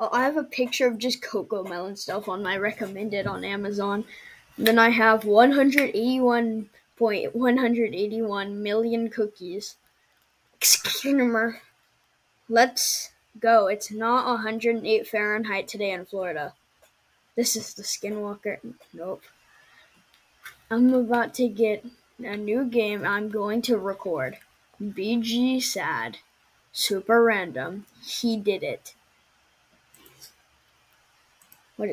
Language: English